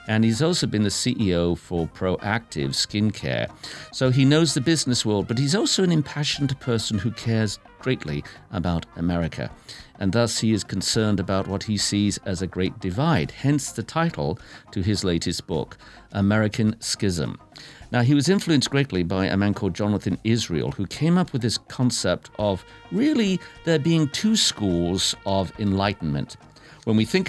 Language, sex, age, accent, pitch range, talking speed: English, male, 50-69, British, 95-135 Hz, 165 wpm